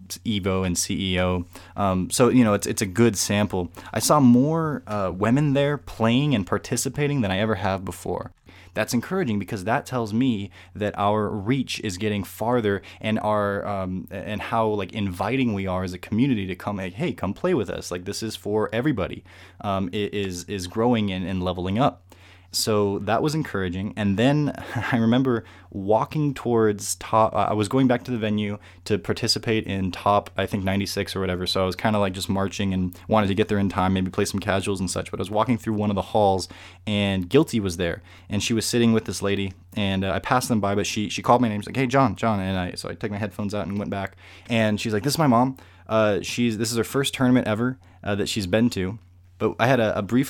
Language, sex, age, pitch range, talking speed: English, male, 20-39, 95-115 Hz, 235 wpm